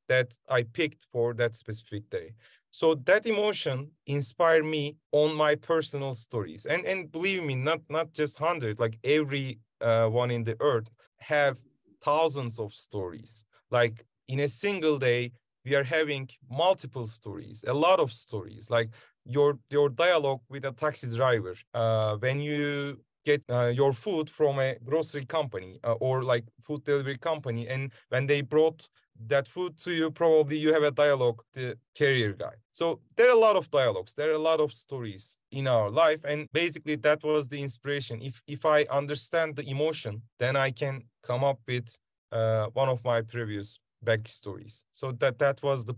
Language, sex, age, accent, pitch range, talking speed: English, male, 30-49, Turkish, 115-155 Hz, 175 wpm